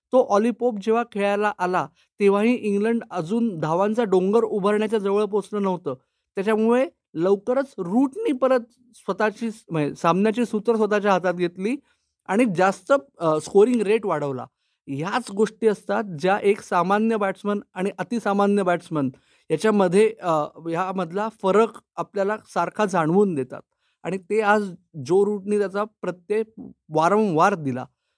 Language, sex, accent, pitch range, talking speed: Marathi, male, native, 180-225 Hz, 115 wpm